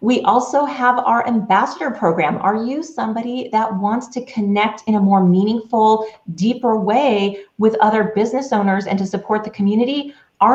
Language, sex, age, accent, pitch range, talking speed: English, female, 30-49, American, 195-250 Hz, 165 wpm